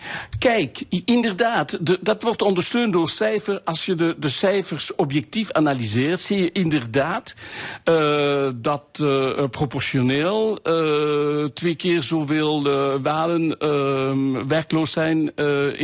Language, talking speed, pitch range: Dutch, 115 wpm, 130-170 Hz